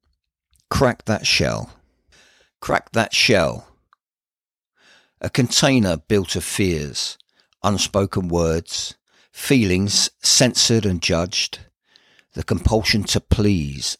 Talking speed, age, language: 90 wpm, 50-69, English